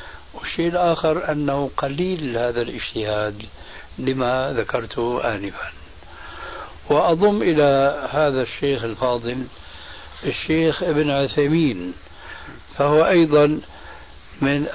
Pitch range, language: 125-150 Hz, Arabic